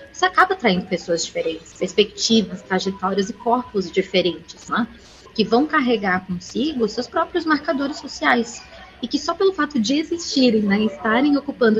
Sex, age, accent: female, 20-39, Brazilian